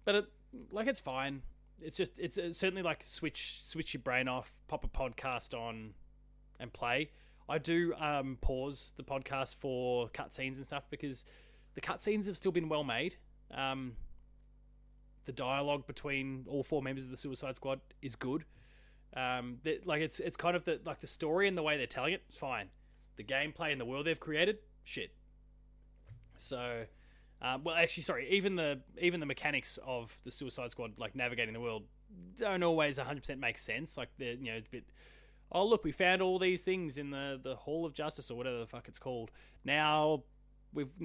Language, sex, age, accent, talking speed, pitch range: English, male, 20-39, Australian, 190 wpm, 125-155 Hz